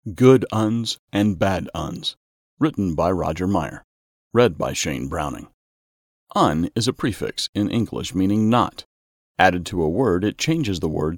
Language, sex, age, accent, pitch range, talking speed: English, male, 40-59, American, 90-115 Hz, 155 wpm